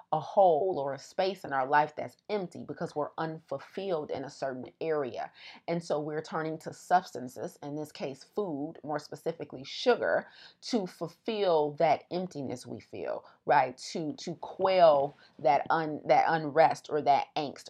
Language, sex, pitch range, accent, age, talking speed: English, female, 140-170 Hz, American, 30-49, 160 wpm